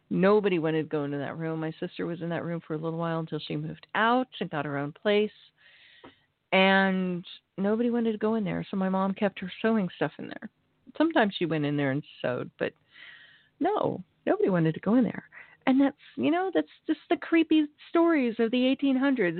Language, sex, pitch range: English, female, 160-230 Hz